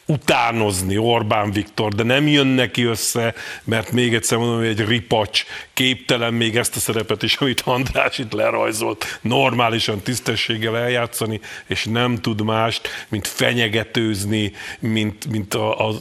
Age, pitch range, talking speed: 50-69, 110-125 Hz, 140 wpm